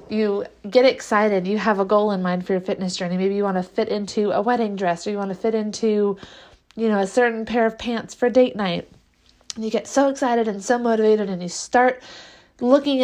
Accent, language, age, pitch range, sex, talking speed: American, English, 30-49, 190-230 Hz, female, 225 wpm